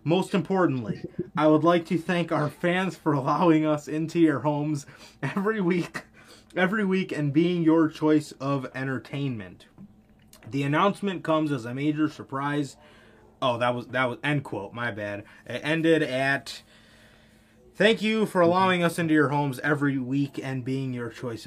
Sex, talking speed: male, 160 wpm